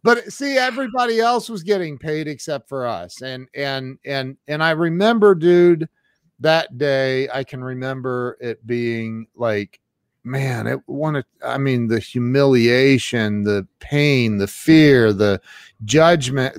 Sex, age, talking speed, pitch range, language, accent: male, 40-59, 135 wpm, 120-165 Hz, English, American